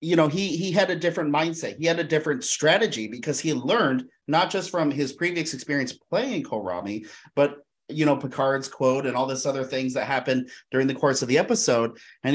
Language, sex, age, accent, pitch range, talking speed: English, male, 30-49, American, 130-160 Hz, 210 wpm